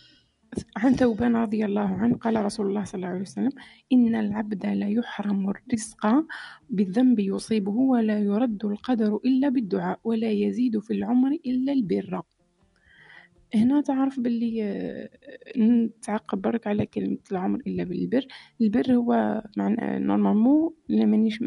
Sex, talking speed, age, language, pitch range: female, 125 wpm, 30-49, Arabic, 205-245 Hz